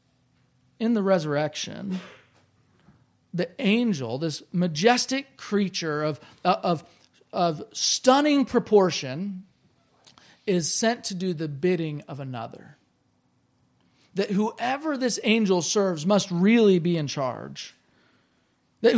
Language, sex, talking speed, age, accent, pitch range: English, male, 100 wpm, 40-59, American, 175-235 Hz